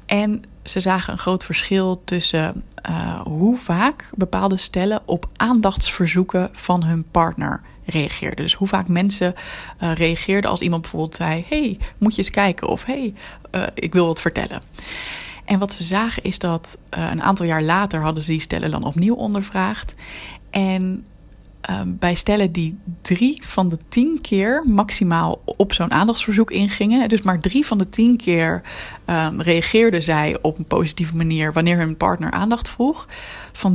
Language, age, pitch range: Dutch, 20-39, 170-210 Hz